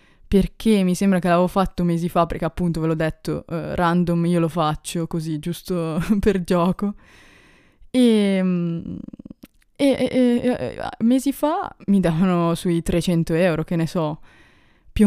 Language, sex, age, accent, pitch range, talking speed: Italian, female, 20-39, native, 165-195 Hz, 145 wpm